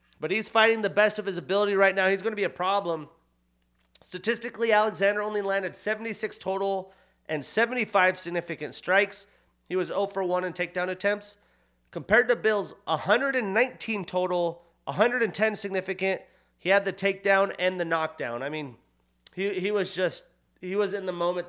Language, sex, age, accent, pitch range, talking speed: English, male, 30-49, American, 170-215 Hz, 165 wpm